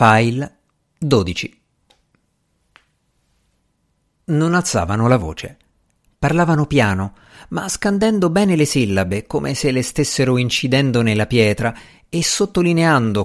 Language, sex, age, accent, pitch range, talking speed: Italian, male, 50-69, native, 110-150 Hz, 100 wpm